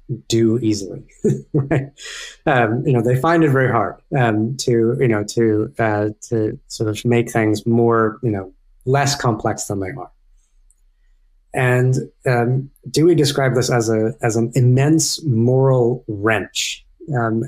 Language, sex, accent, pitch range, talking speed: English, male, American, 110-130 Hz, 150 wpm